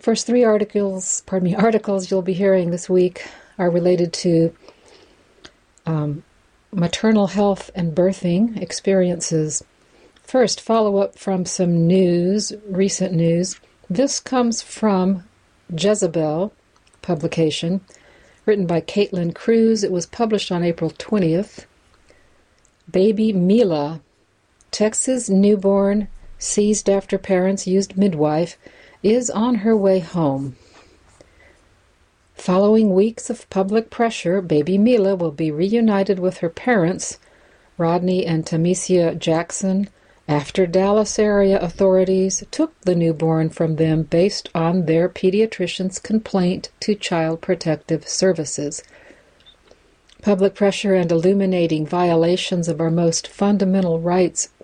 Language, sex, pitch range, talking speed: English, female, 165-205 Hz, 110 wpm